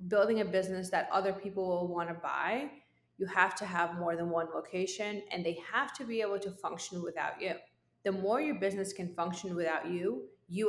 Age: 20-39